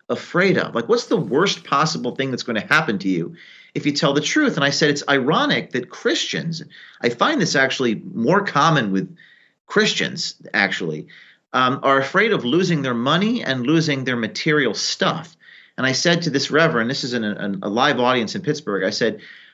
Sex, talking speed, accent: male, 195 wpm, American